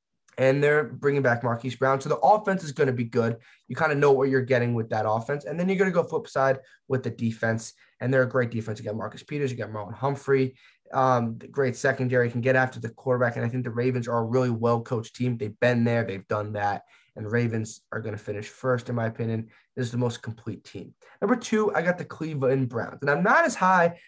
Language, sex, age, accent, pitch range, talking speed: English, male, 20-39, American, 115-145 Hz, 255 wpm